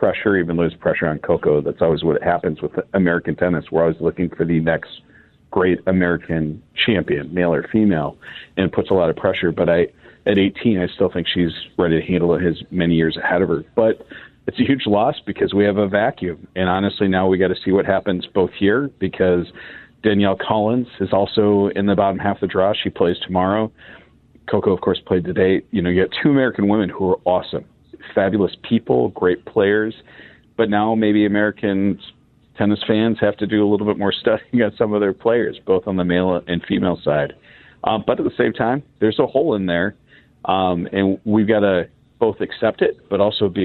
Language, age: English, 40-59